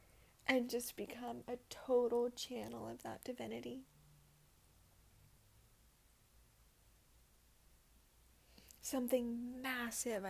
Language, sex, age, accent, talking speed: English, female, 10-29, American, 65 wpm